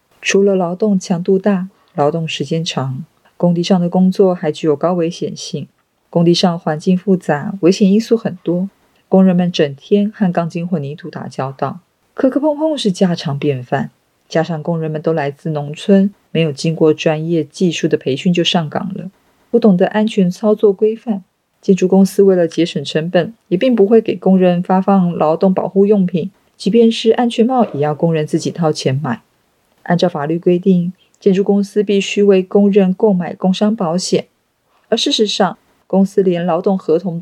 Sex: female